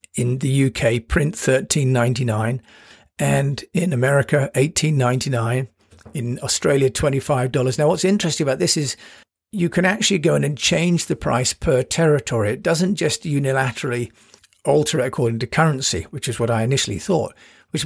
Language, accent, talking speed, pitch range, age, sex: English, British, 160 wpm, 120-160 Hz, 50-69, male